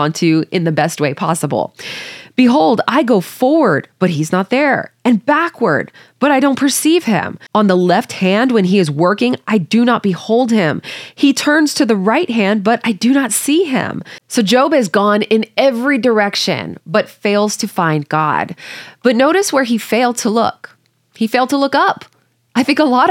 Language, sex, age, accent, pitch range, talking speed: English, female, 20-39, American, 195-260 Hz, 190 wpm